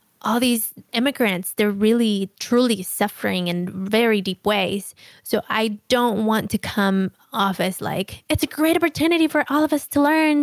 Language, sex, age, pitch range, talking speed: English, female, 20-39, 190-230 Hz, 175 wpm